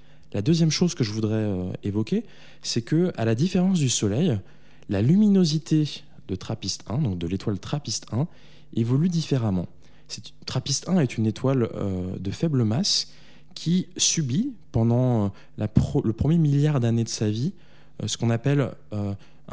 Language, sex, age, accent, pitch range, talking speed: French, male, 20-39, French, 110-155 Hz, 165 wpm